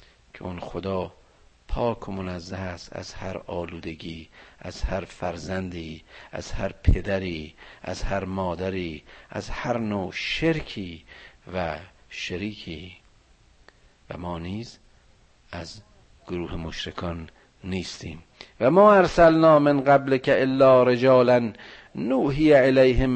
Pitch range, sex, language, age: 100-135 Hz, male, Persian, 50-69